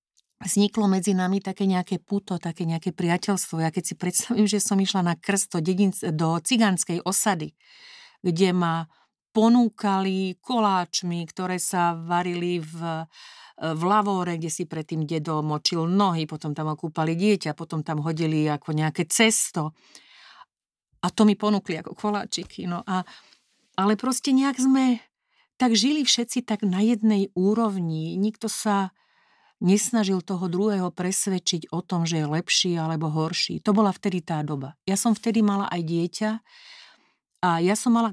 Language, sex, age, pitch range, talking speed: Slovak, female, 50-69, 165-215 Hz, 150 wpm